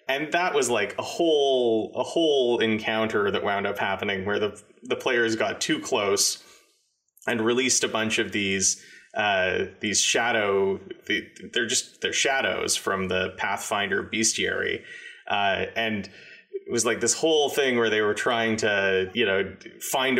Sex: male